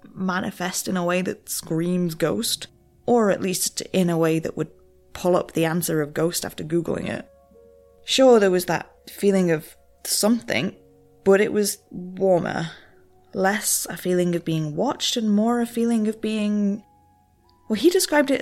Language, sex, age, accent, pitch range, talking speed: English, female, 20-39, British, 160-210 Hz, 165 wpm